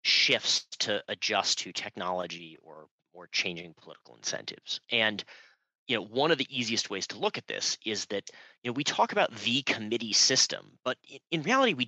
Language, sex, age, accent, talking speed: English, male, 30-49, American, 180 wpm